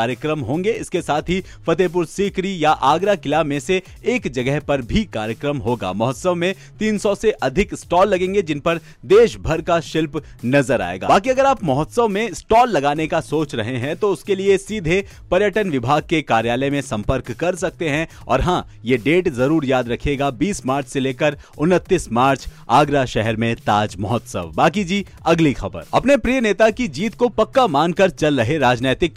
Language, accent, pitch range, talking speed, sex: Hindi, native, 130-190 Hz, 185 wpm, male